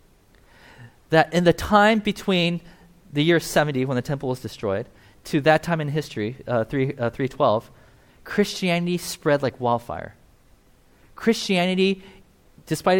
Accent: American